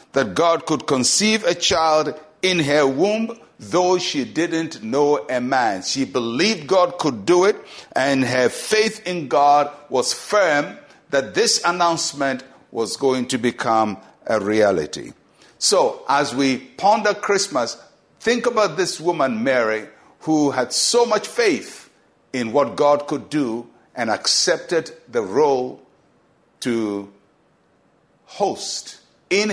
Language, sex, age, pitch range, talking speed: English, male, 60-79, 125-180 Hz, 130 wpm